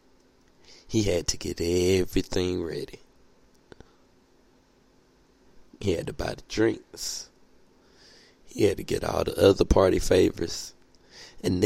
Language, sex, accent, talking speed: English, male, American, 115 wpm